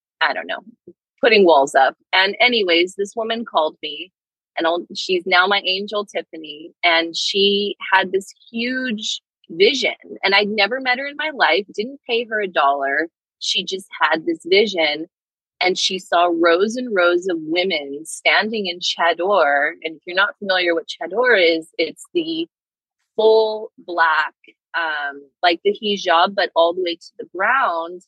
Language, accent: English, American